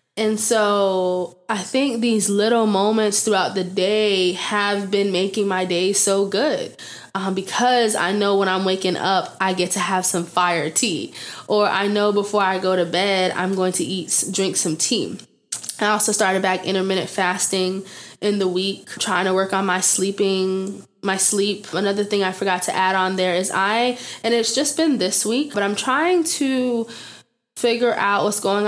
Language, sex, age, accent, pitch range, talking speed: English, female, 20-39, American, 185-205 Hz, 185 wpm